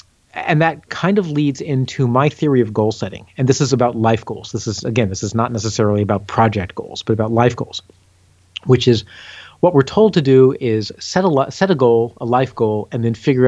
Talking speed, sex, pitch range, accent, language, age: 225 wpm, male, 110-140 Hz, American, English, 40-59